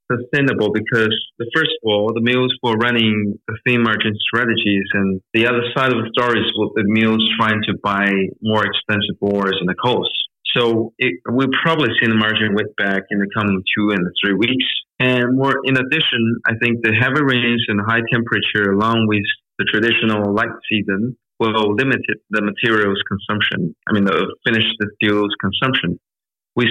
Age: 30-49